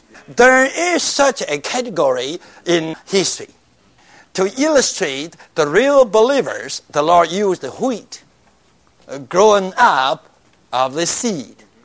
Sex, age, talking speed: male, 60-79, 105 wpm